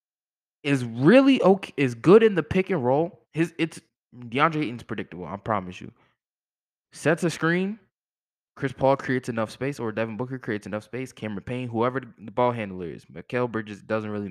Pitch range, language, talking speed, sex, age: 110-155 Hz, English, 185 wpm, male, 20-39